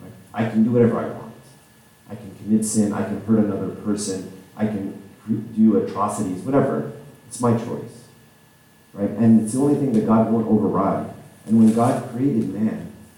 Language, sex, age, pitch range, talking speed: English, male, 40-59, 90-110 Hz, 175 wpm